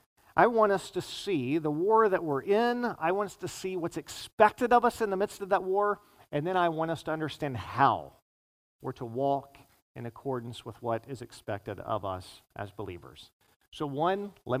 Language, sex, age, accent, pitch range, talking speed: English, male, 50-69, American, 130-185 Hz, 200 wpm